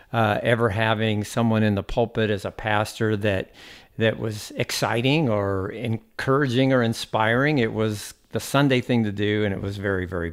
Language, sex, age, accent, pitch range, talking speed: English, male, 50-69, American, 105-135 Hz, 170 wpm